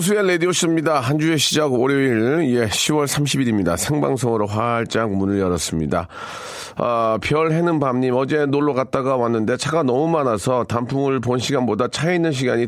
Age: 40-59